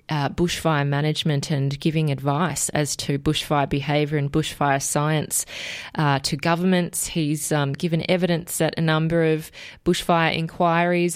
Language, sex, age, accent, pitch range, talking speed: English, female, 20-39, Australian, 150-175 Hz, 140 wpm